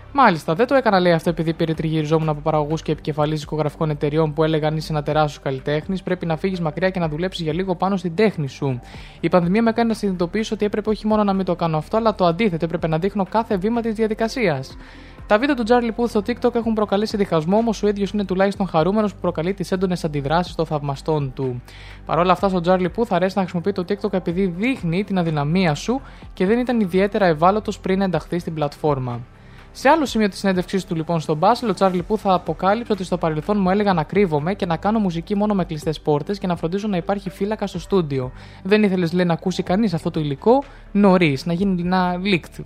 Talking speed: 225 wpm